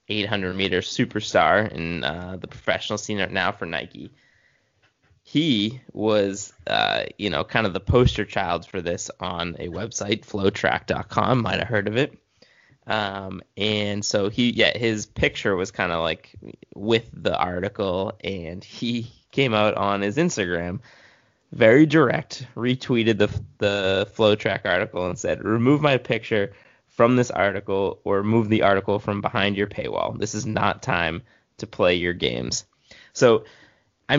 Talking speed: 155 wpm